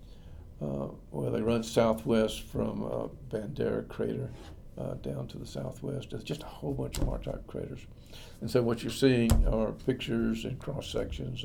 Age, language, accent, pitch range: 60-79, English, American, 80-115 Hz